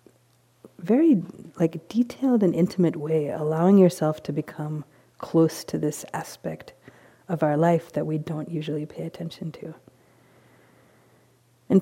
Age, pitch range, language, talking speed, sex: 40-59, 150-175 Hz, English, 125 wpm, female